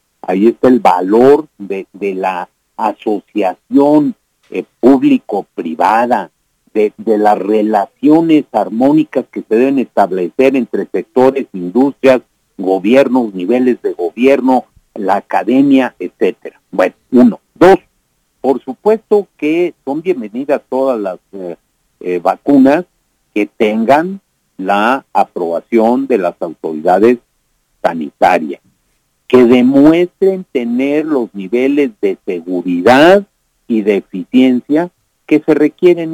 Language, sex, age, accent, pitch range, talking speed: English, male, 50-69, Mexican, 110-155 Hz, 105 wpm